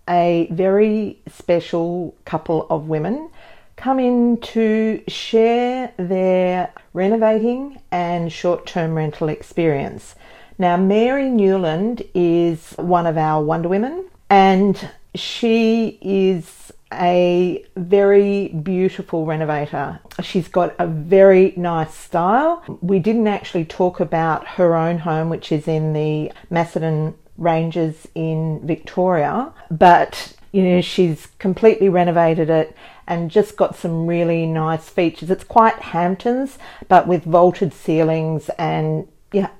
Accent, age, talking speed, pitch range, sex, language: Australian, 40-59, 115 wpm, 165-205 Hz, female, English